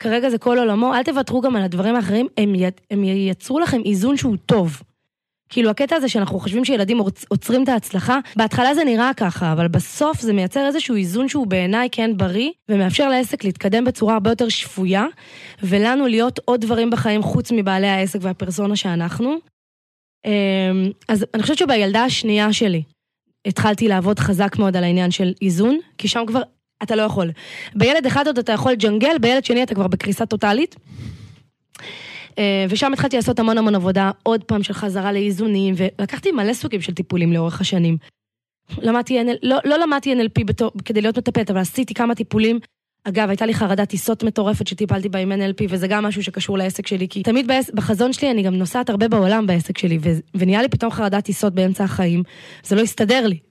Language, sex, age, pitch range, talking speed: Hebrew, female, 20-39, 195-240 Hz, 175 wpm